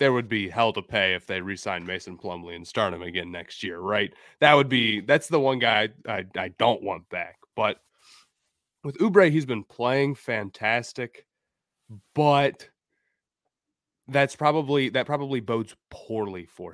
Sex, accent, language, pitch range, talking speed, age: male, American, English, 100-135 Hz, 170 wpm, 20-39